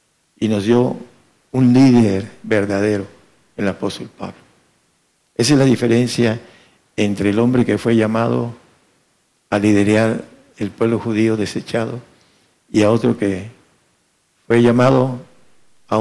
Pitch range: 105-125 Hz